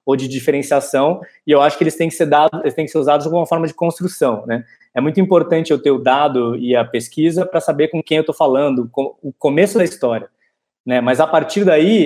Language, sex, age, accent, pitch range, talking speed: Portuguese, male, 20-39, Brazilian, 130-180 Hz, 245 wpm